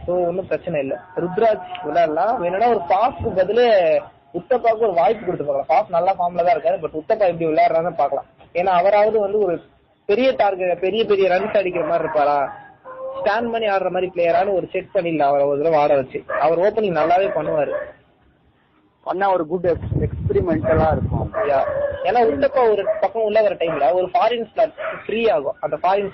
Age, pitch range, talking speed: 20-39, 165-225 Hz, 110 wpm